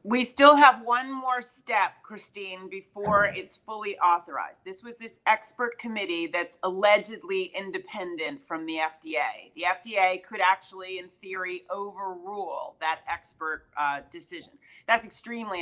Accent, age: American, 40-59